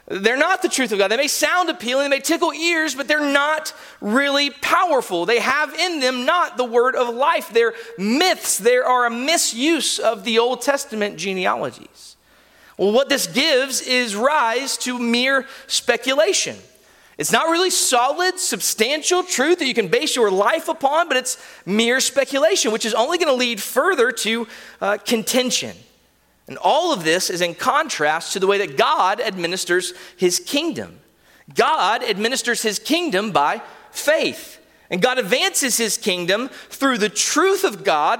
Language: English